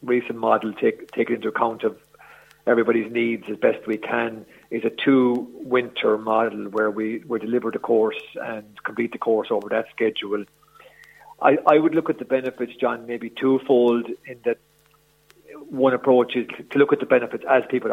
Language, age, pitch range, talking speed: English, 40-59, 115-130 Hz, 175 wpm